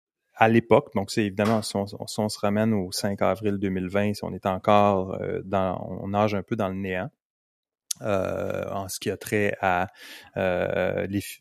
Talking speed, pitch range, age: 190 wpm, 100-120 Hz, 30-49